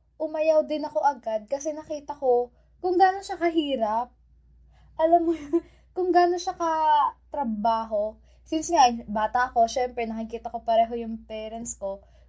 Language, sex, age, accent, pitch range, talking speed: Filipino, female, 20-39, native, 215-265 Hz, 135 wpm